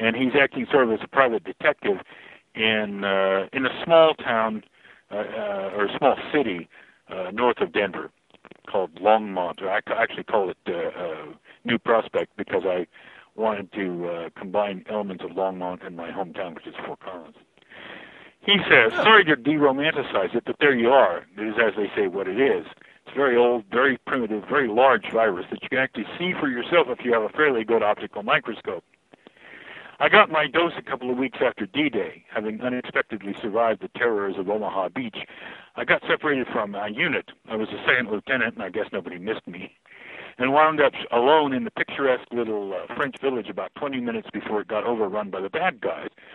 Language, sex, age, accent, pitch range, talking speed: English, male, 50-69, American, 105-155 Hz, 195 wpm